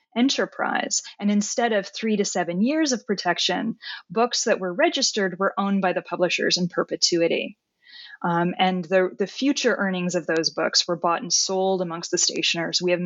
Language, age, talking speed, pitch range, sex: English, 20-39, 180 wpm, 180-215 Hz, female